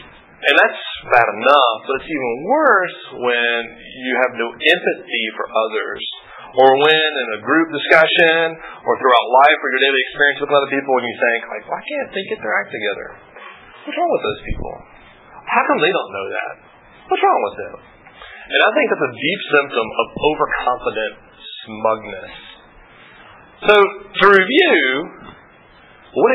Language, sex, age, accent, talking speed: English, male, 30-49, American, 160 wpm